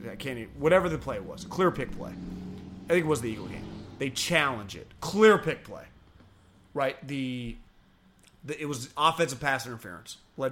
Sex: male